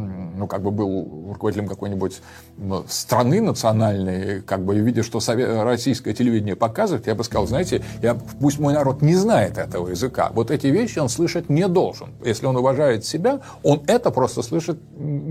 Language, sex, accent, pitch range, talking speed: Russian, male, native, 110-150 Hz, 160 wpm